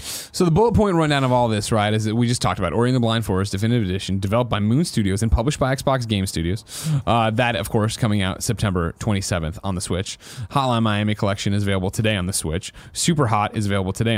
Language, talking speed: English, 240 wpm